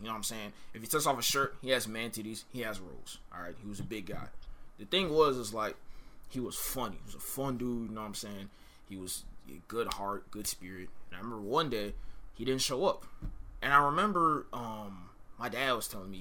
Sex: male